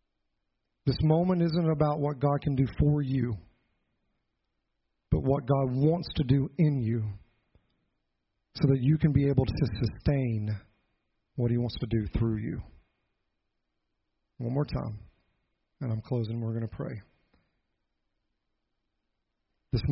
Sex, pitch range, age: male, 105-145 Hz, 40-59